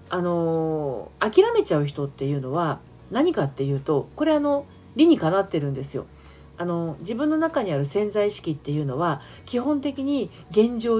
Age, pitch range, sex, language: 40-59, 145-215 Hz, female, Japanese